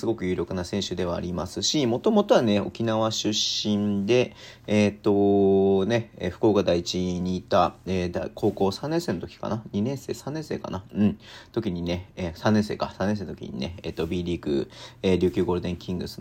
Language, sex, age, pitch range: Japanese, male, 40-59, 85-105 Hz